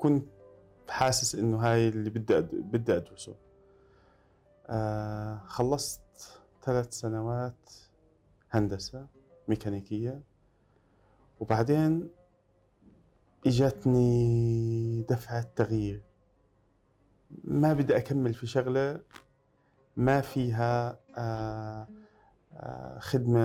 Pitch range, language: 105-130 Hz, Arabic